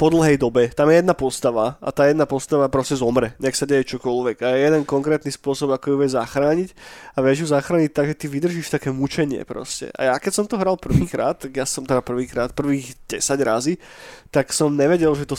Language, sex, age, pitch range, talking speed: Slovak, male, 20-39, 130-155 Hz, 215 wpm